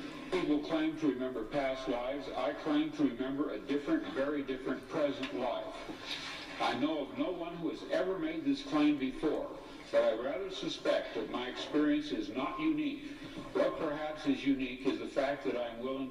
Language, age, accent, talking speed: English, 60-79, American, 185 wpm